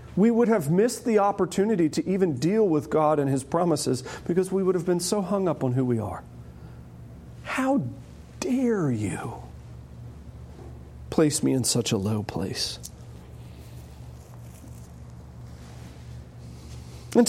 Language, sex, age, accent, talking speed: English, male, 40-59, American, 130 wpm